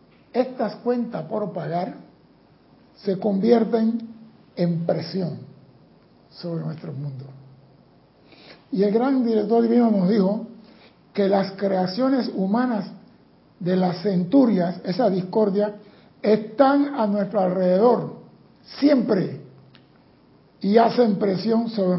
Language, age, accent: Spanish, 60-79, American